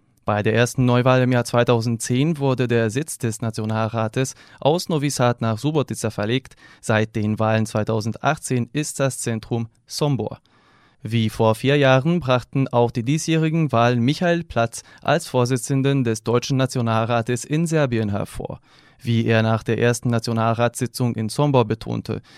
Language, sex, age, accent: German, male, 20-39, German